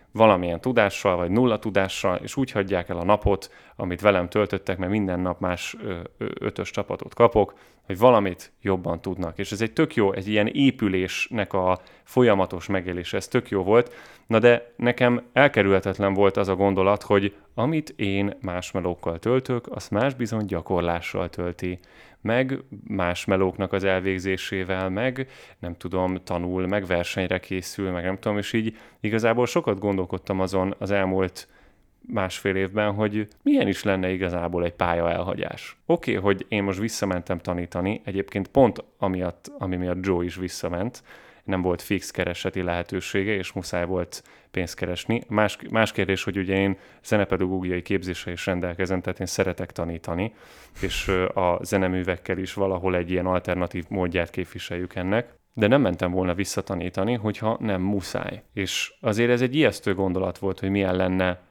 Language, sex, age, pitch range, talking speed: Hungarian, male, 30-49, 90-105 Hz, 155 wpm